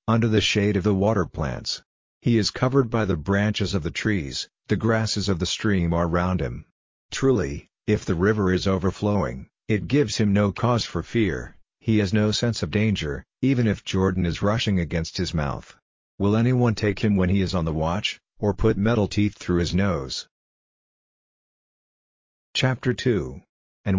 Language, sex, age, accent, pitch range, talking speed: English, male, 50-69, American, 90-105 Hz, 180 wpm